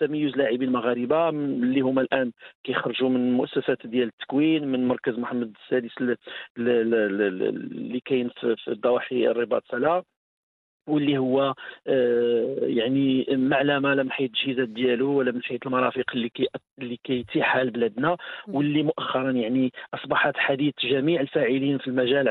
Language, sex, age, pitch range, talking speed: English, male, 50-69, 125-145 Hz, 120 wpm